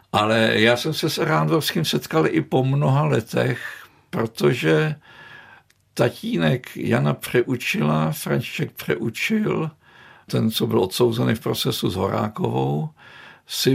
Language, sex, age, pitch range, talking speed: Czech, male, 60-79, 105-130 Hz, 115 wpm